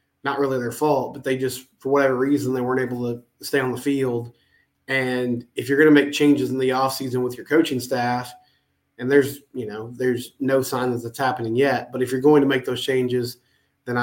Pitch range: 120-140 Hz